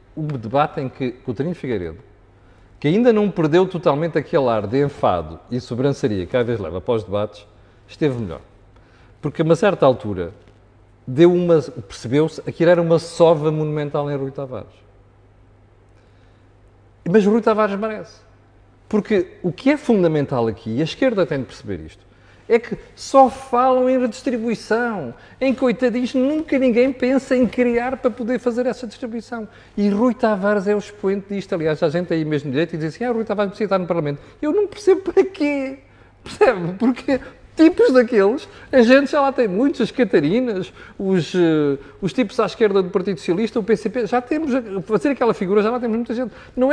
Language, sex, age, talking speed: Portuguese, male, 40-59, 185 wpm